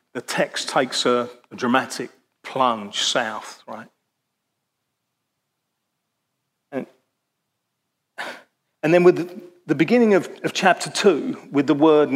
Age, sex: 40-59, male